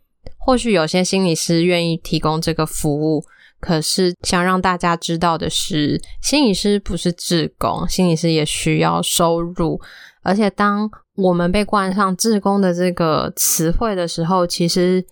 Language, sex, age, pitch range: Chinese, female, 20-39, 160-185 Hz